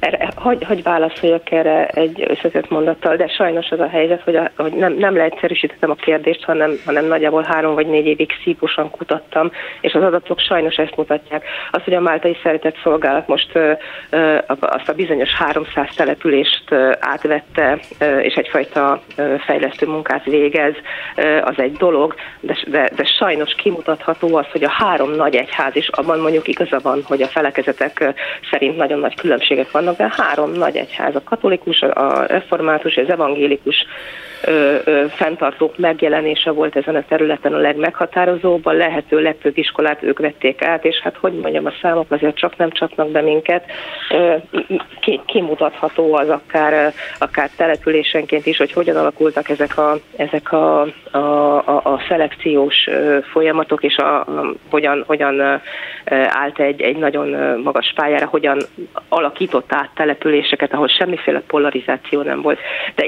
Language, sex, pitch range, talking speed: Hungarian, female, 150-165 Hz, 160 wpm